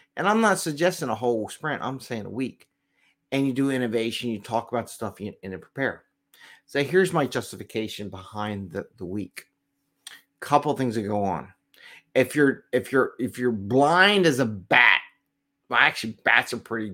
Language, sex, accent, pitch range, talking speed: English, male, American, 110-145 Hz, 180 wpm